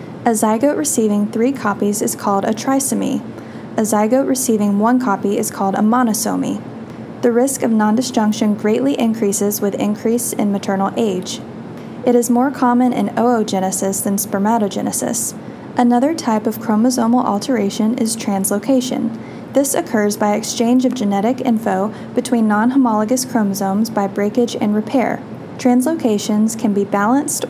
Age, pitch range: 10-29, 210-250 Hz